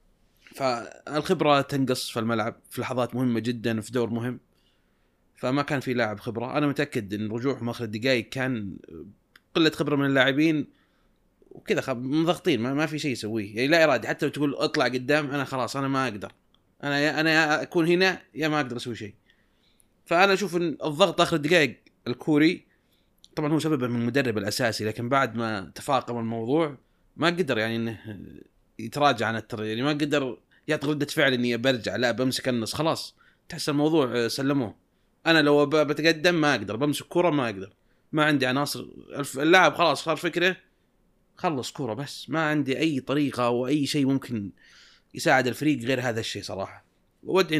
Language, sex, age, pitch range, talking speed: Arabic, male, 30-49, 120-150 Hz, 165 wpm